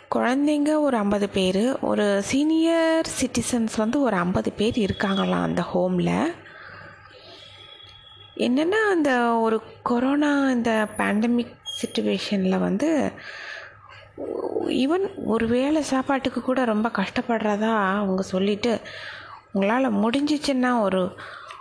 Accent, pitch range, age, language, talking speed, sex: native, 200-280 Hz, 20-39, Tamil, 95 wpm, female